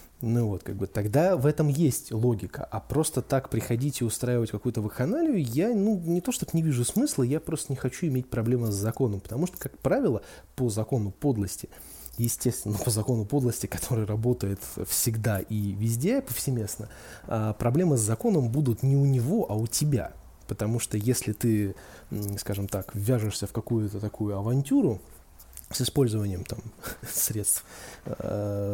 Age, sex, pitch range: 20-39, male, 105-140 Hz